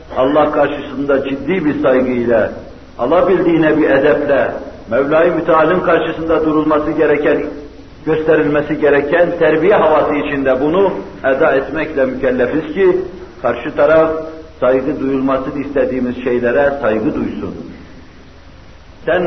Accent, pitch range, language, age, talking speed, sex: native, 130-165 Hz, Turkish, 60-79, 100 wpm, male